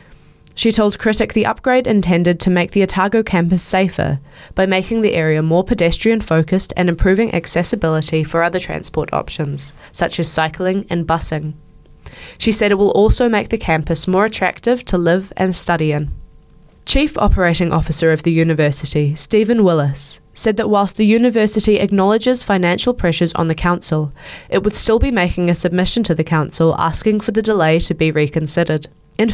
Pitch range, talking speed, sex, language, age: 160-215 Hz, 170 wpm, female, English, 10-29